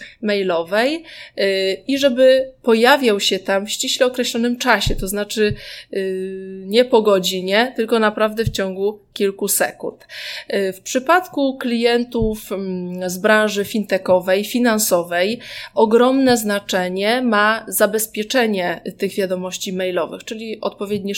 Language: Polish